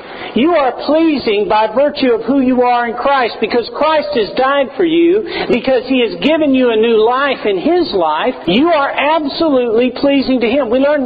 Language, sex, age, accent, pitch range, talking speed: English, male, 50-69, American, 220-295 Hz, 195 wpm